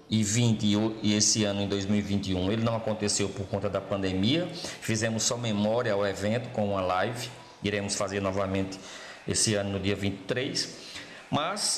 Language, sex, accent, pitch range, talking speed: Portuguese, male, Brazilian, 105-150 Hz, 160 wpm